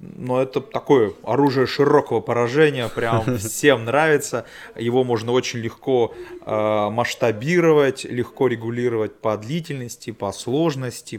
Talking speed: 105 wpm